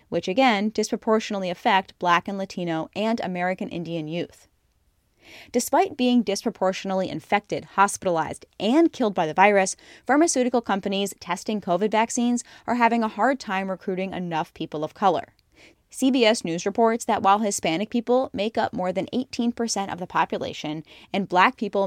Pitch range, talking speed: 180-225 Hz, 150 wpm